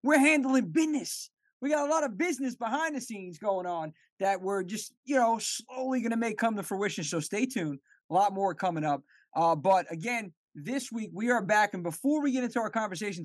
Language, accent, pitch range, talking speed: English, American, 180-240 Hz, 220 wpm